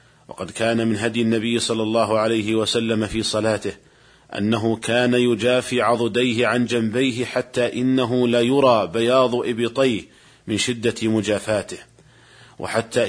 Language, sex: Arabic, male